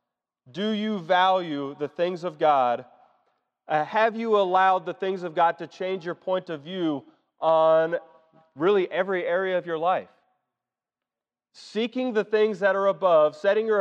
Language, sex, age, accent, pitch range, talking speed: English, male, 30-49, American, 170-205 Hz, 155 wpm